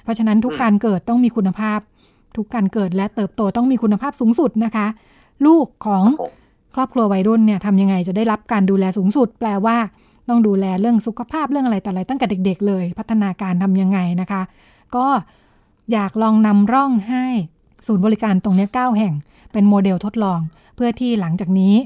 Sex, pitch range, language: female, 195-230 Hz, Thai